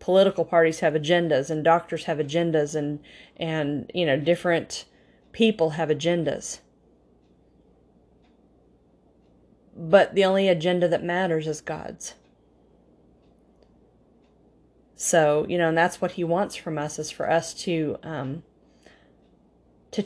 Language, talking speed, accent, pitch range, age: English, 120 wpm, American, 150-180 Hz, 30-49